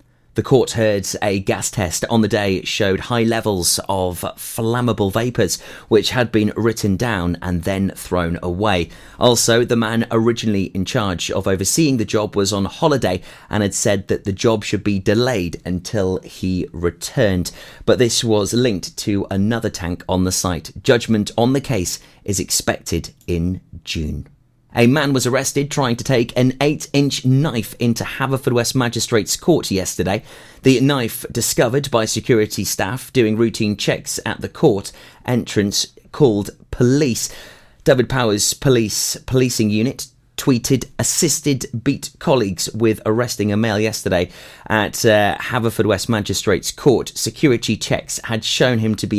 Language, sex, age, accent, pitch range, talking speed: English, male, 30-49, British, 95-120 Hz, 155 wpm